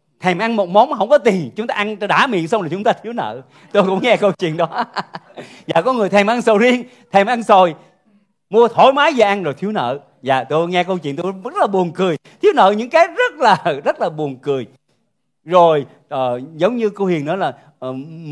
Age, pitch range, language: 40-59, 150-225 Hz, Vietnamese